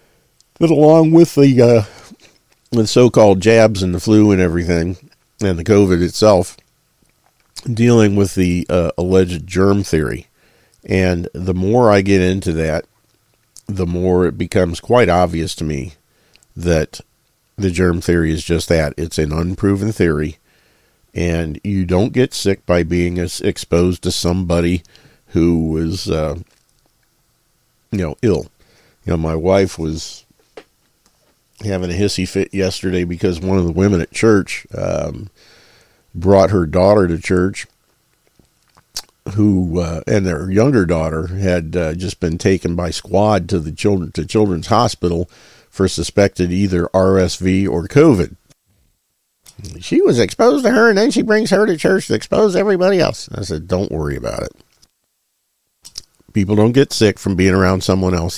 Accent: American